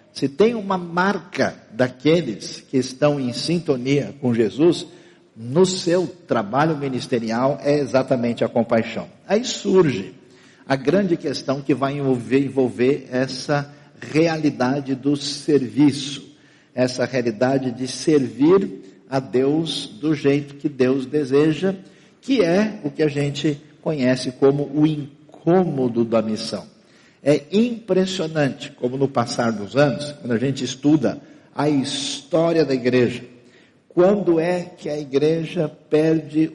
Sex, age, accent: male, 50-69, Brazilian